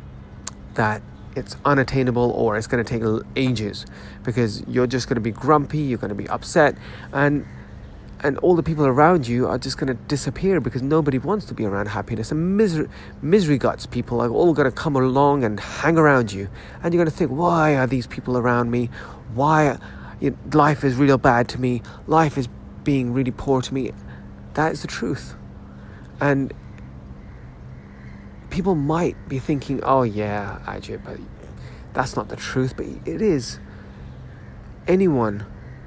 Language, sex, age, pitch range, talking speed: English, male, 30-49, 110-145 Hz, 160 wpm